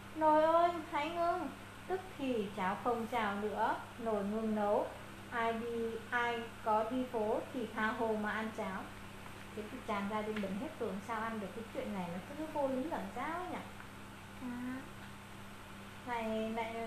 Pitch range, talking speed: 215-255 Hz, 165 wpm